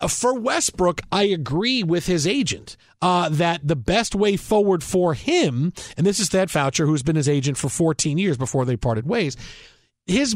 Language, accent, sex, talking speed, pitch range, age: English, American, male, 175 wpm, 155-210 Hz, 40-59